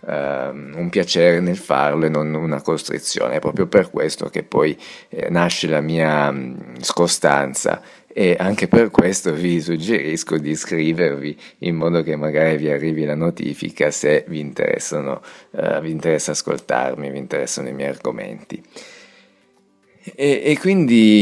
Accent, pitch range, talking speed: native, 80-105 Hz, 140 wpm